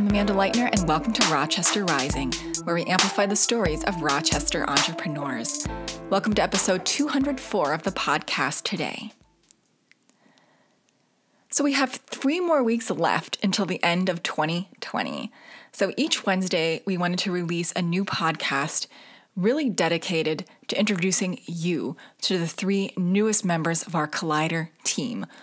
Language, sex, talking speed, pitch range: English, female, 140 wpm, 165-215 Hz